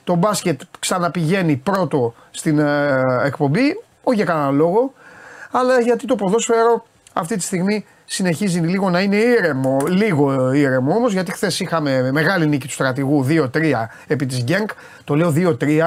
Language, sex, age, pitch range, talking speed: Greek, male, 30-49, 145-200 Hz, 150 wpm